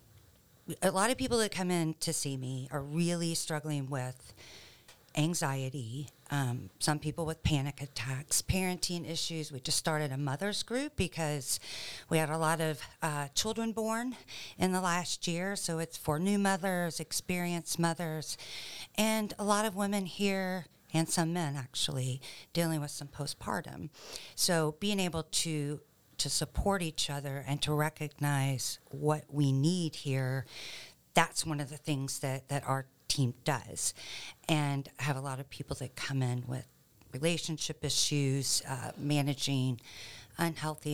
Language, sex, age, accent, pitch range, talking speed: English, female, 50-69, American, 135-165 Hz, 150 wpm